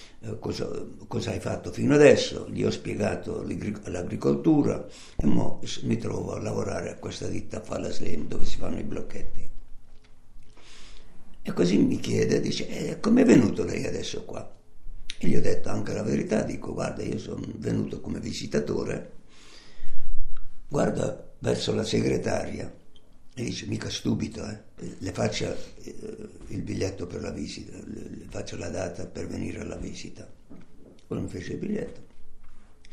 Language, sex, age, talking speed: Italian, male, 60-79, 155 wpm